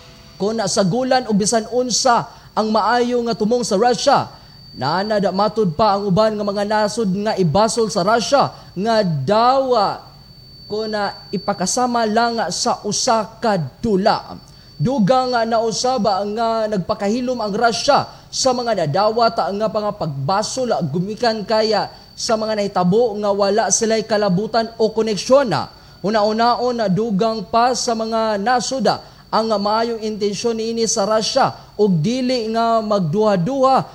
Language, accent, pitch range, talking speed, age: Filipino, native, 205-235 Hz, 140 wpm, 20-39